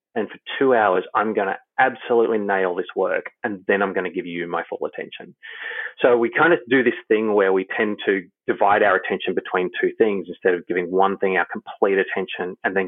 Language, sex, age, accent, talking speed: English, male, 30-49, Australian, 225 wpm